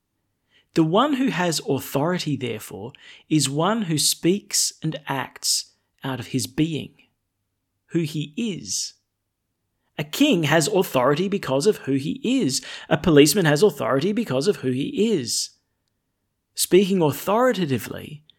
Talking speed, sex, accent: 125 wpm, male, Australian